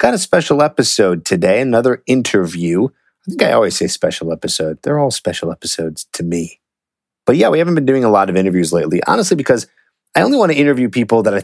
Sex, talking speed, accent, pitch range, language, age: male, 215 wpm, American, 90-145 Hz, English, 30-49